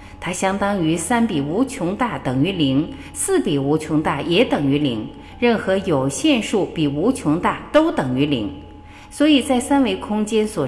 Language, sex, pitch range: Chinese, female, 150-255 Hz